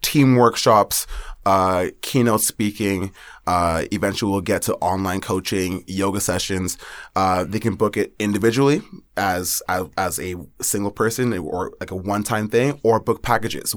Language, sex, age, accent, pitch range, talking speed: English, male, 20-39, American, 90-105 Hz, 155 wpm